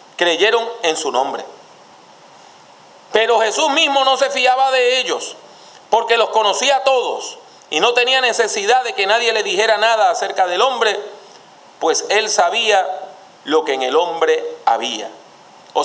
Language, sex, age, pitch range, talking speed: English, male, 40-59, 205-280 Hz, 150 wpm